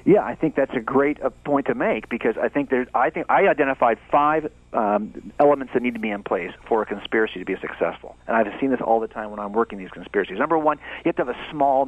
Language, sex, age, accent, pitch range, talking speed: English, male, 40-59, American, 125-180 Hz, 265 wpm